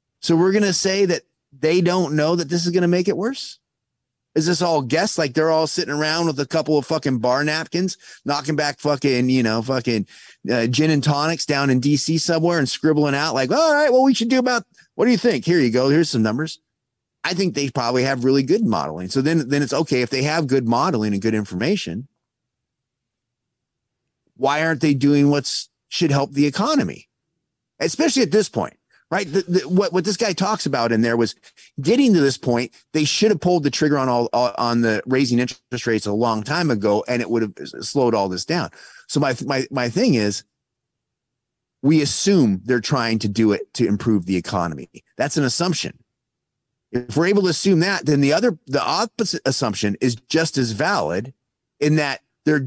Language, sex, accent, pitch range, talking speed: English, male, American, 125-170 Hz, 205 wpm